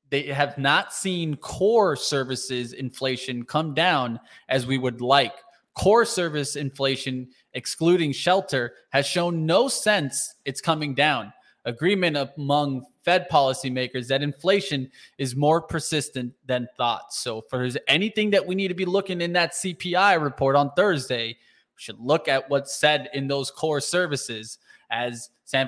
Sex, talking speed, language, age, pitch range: male, 145 wpm, English, 20-39, 135-170 Hz